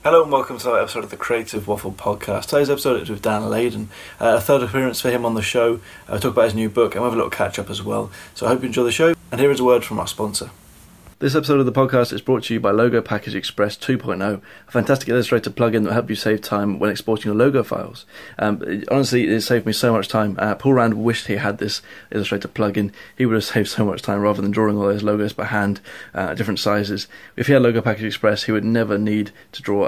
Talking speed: 265 wpm